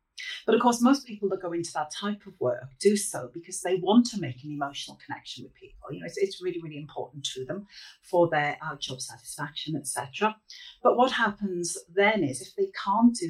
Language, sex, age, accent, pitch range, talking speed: English, female, 40-59, British, 145-190 Hz, 215 wpm